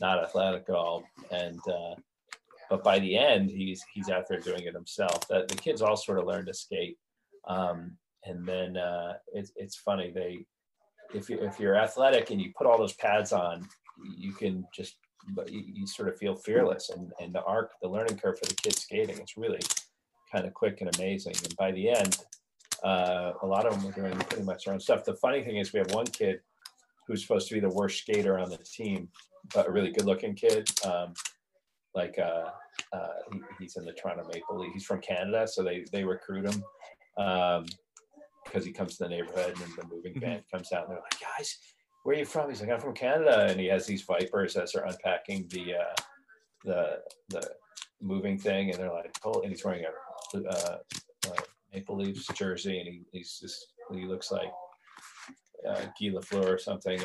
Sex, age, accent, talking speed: male, 30-49, American, 205 wpm